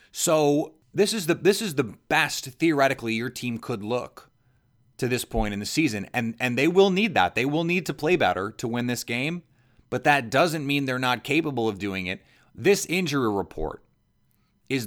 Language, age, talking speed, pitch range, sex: English, 30-49, 200 wpm, 115-150 Hz, male